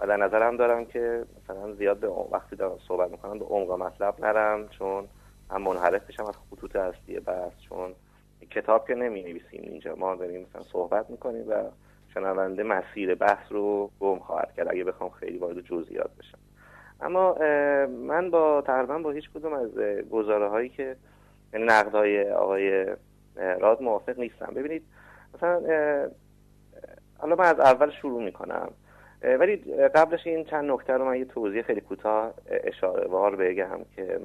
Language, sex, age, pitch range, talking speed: Persian, male, 30-49, 100-165 Hz, 155 wpm